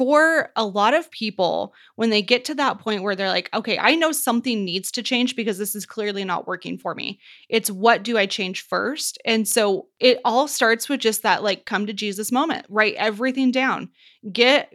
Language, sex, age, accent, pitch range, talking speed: English, female, 20-39, American, 200-250 Hz, 210 wpm